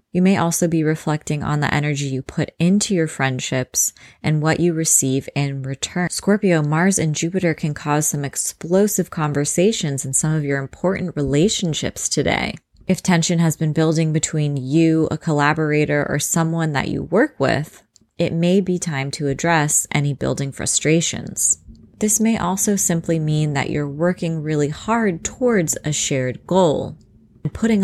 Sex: female